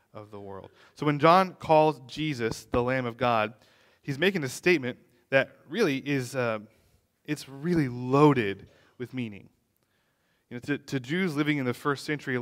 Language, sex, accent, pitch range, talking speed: English, male, American, 115-135 Hz, 175 wpm